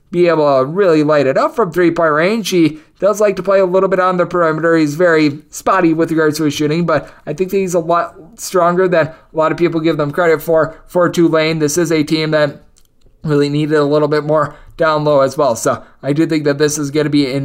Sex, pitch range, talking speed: male, 155-185 Hz, 260 wpm